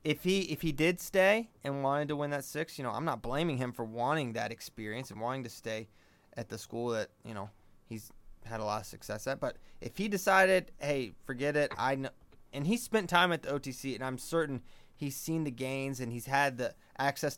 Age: 20-39